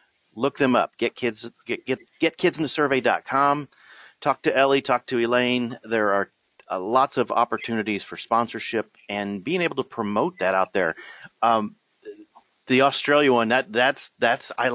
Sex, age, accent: male, 40-59, American